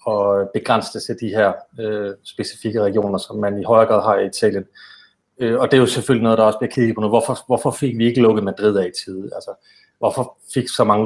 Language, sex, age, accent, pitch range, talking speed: Danish, male, 30-49, native, 100-120 Hz, 240 wpm